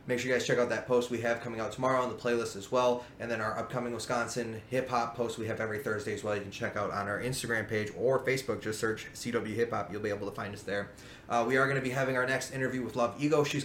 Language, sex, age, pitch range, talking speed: English, male, 20-39, 115-135 Hz, 290 wpm